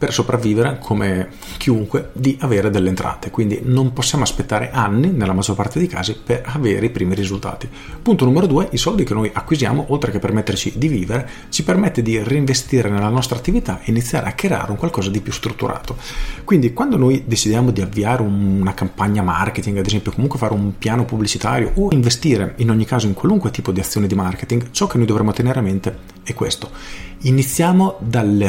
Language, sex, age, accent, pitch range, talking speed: Italian, male, 40-59, native, 100-130 Hz, 190 wpm